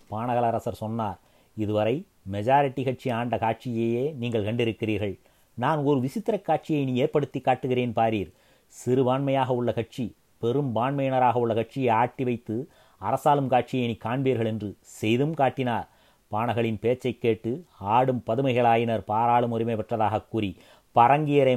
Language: Tamil